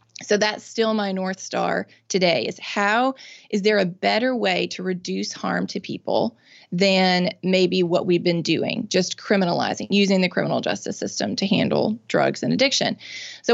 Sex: female